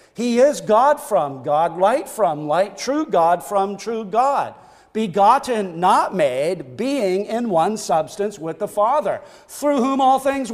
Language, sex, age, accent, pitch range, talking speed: English, male, 40-59, American, 190-260 Hz, 155 wpm